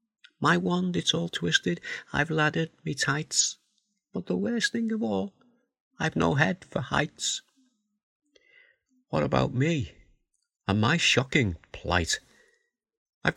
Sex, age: male, 50-69